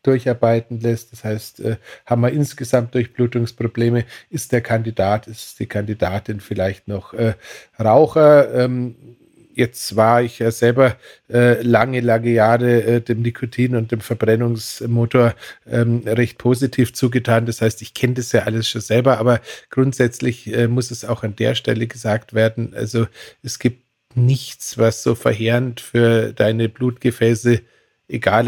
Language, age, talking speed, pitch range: German, 50-69, 135 wpm, 110-120 Hz